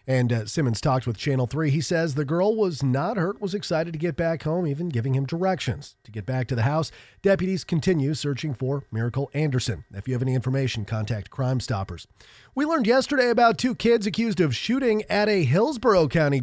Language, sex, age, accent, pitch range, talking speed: English, male, 40-59, American, 125-170 Hz, 210 wpm